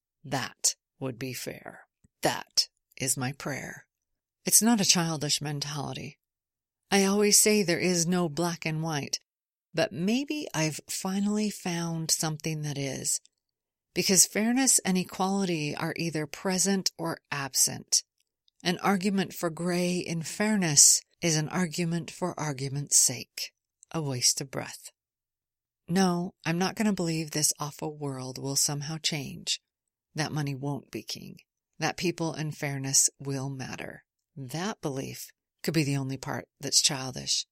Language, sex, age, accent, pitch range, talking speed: English, female, 40-59, American, 140-180 Hz, 140 wpm